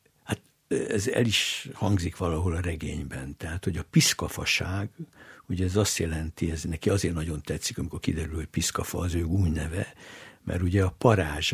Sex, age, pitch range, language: male, 60-79, 85-110 Hz, Hungarian